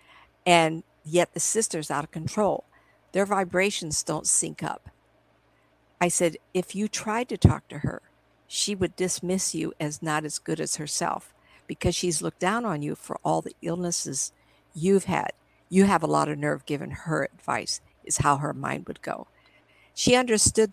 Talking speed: 175 wpm